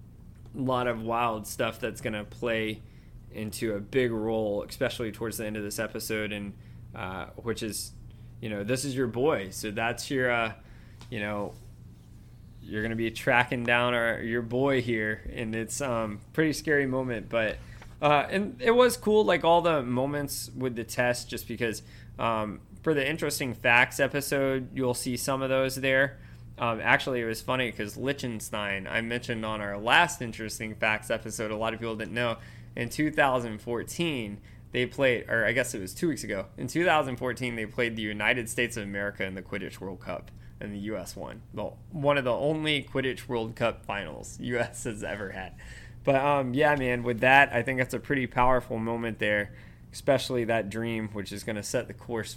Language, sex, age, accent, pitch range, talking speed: English, male, 20-39, American, 110-130 Hz, 190 wpm